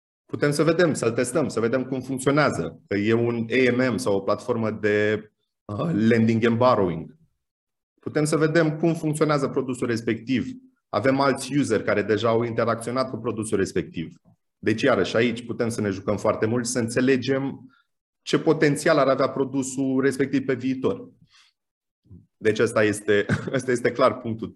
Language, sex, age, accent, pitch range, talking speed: Romanian, male, 30-49, native, 110-135 Hz, 150 wpm